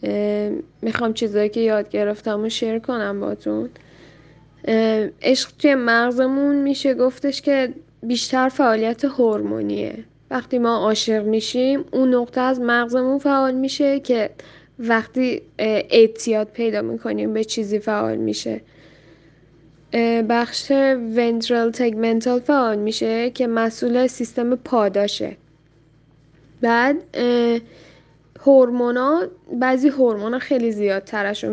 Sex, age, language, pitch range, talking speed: female, 10-29, Persian, 210-260 Hz, 100 wpm